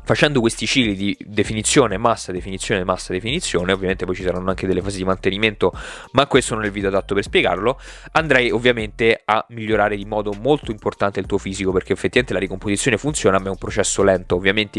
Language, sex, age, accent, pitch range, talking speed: Italian, male, 20-39, native, 95-115 Hz, 200 wpm